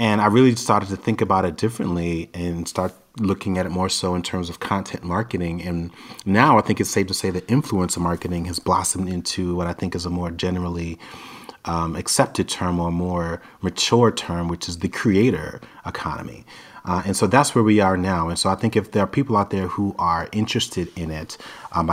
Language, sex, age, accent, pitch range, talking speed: English, male, 30-49, American, 85-95 Hz, 215 wpm